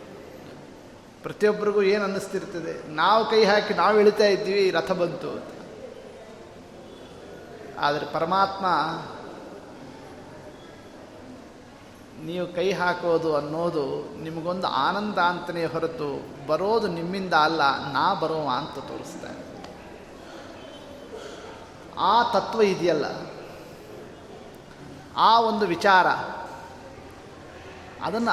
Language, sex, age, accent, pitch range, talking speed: Kannada, male, 30-49, native, 165-195 Hz, 75 wpm